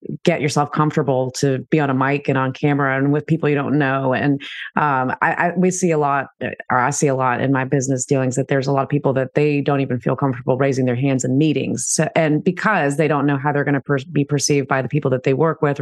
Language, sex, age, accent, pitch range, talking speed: English, female, 30-49, American, 130-155 Hz, 270 wpm